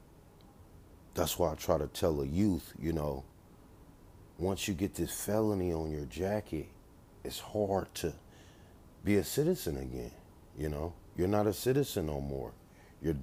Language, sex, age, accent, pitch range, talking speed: English, male, 40-59, American, 80-100 Hz, 155 wpm